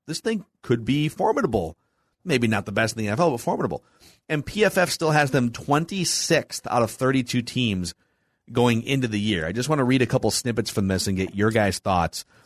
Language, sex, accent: English, male, American